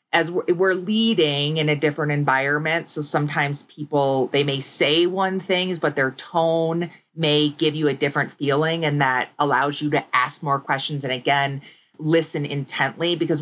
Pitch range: 135-160 Hz